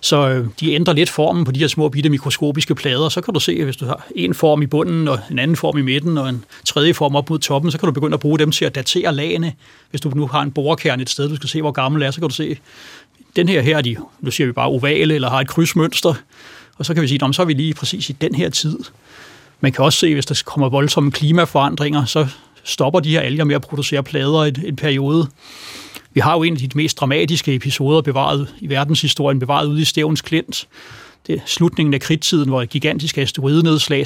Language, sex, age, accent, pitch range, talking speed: Danish, male, 30-49, native, 140-160 Hz, 250 wpm